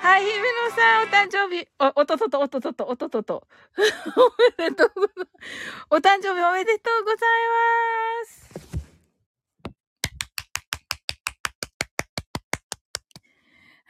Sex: female